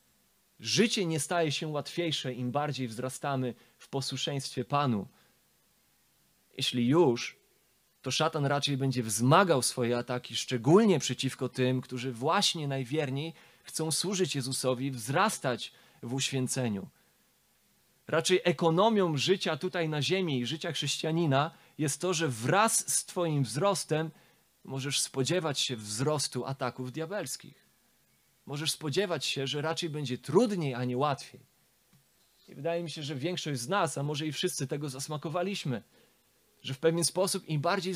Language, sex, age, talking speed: Polish, male, 30-49, 135 wpm